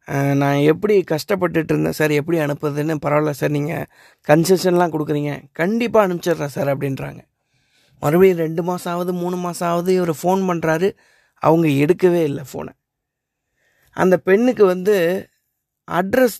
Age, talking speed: 20-39, 125 wpm